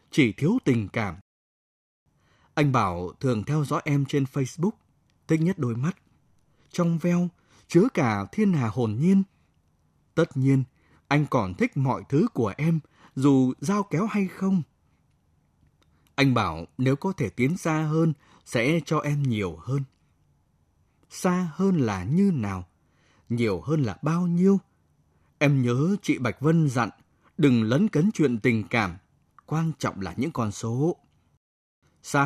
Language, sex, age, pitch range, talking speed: Vietnamese, male, 20-39, 115-165 Hz, 150 wpm